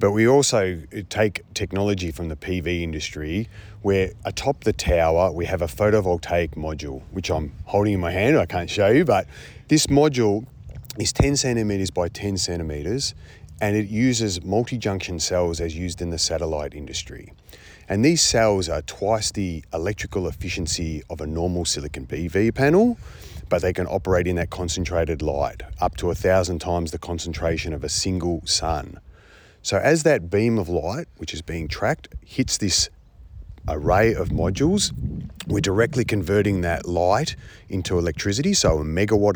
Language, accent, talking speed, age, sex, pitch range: English, Australian, 160 wpm, 30-49, male, 85-105 Hz